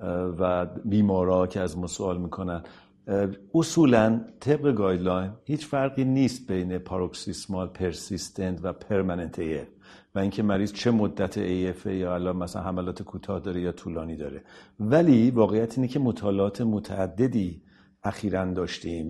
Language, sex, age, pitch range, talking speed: Persian, male, 50-69, 95-115 Hz, 130 wpm